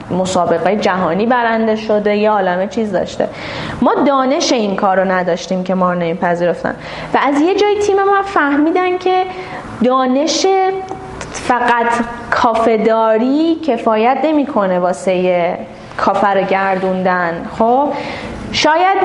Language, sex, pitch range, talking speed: Persian, female, 190-270 Hz, 115 wpm